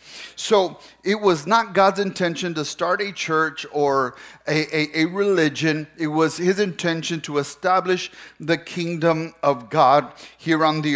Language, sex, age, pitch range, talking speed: English, male, 40-59, 155-190 Hz, 155 wpm